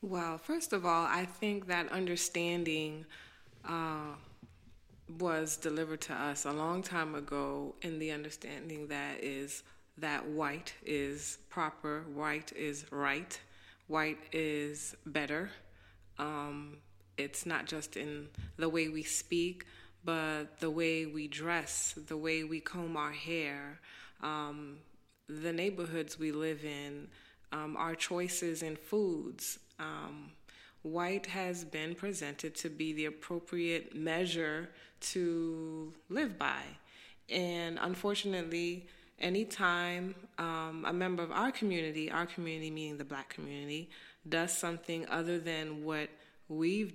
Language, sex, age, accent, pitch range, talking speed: English, female, 20-39, American, 150-170 Hz, 125 wpm